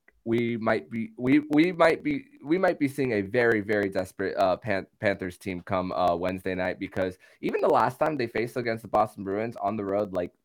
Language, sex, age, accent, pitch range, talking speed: English, male, 20-39, American, 100-120 Hz, 220 wpm